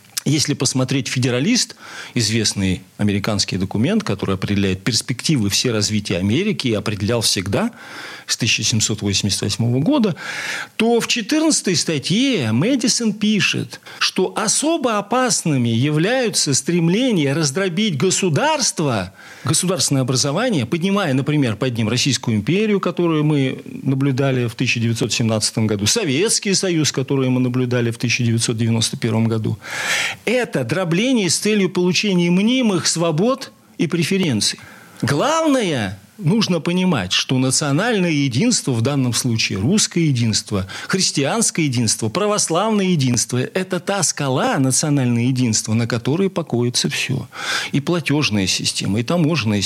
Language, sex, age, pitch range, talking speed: Russian, male, 40-59, 115-185 Hz, 110 wpm